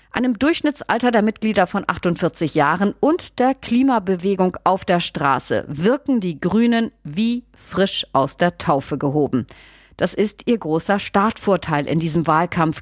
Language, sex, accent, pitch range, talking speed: German, female, German, 160-220 Hz, 140 wpm